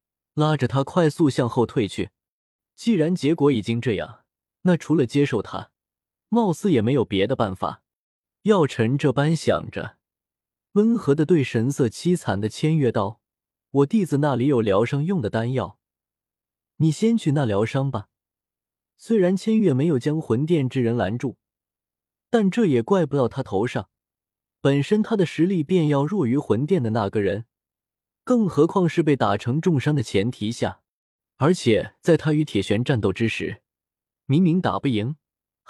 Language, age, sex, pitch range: Chinese, 20-39, male, 115-170 Hz